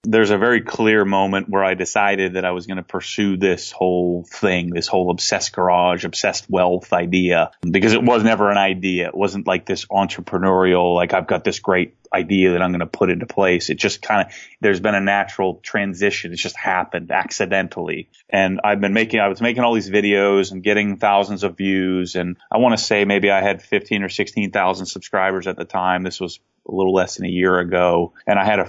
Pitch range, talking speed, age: 95-105 Hz, 220 wpm, 30-49